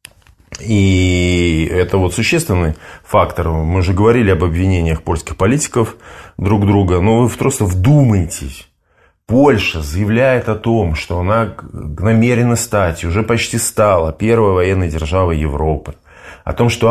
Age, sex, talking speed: 20-39, male, 130 wpm